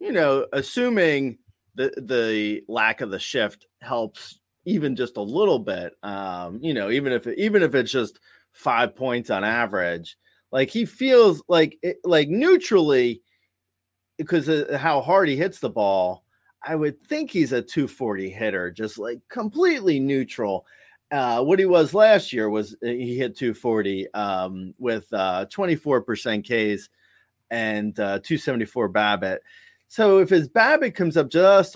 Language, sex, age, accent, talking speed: English, male, 30-49, American, 165 wpm